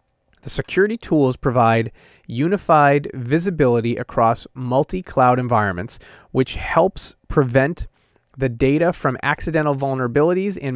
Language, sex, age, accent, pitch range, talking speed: English, male, 30-49, American, 120-155 Hz, 100 wpm